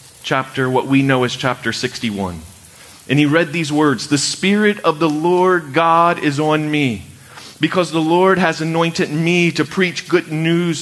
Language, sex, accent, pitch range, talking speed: English, male, American, 115-160 Hz, 170 wpm